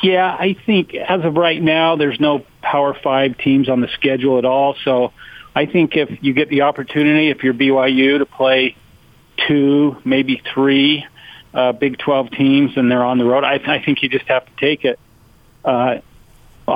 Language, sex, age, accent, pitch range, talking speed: English, male, 40-59, American, 120-140 Hz, 190 wpm